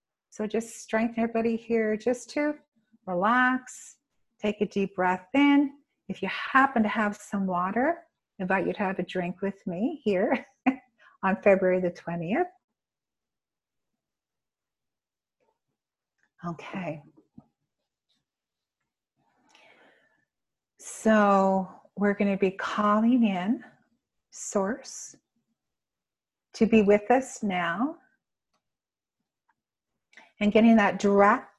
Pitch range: 195-240 Hz